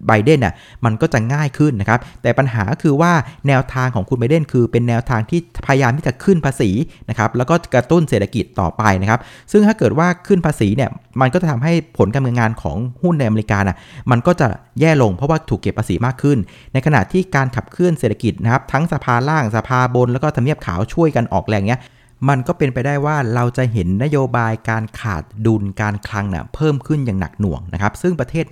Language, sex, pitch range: Thai, male, 105-140 Hz